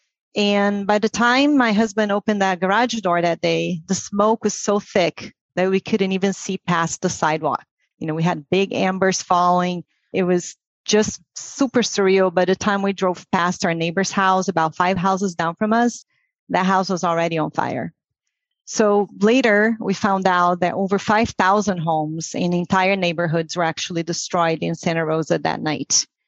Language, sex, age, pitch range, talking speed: English, female, 30-49, 175-215 Hz, 180 wpm